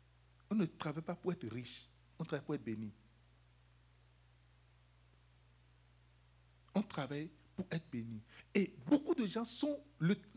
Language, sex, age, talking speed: French, male, 60-79, 135 wpm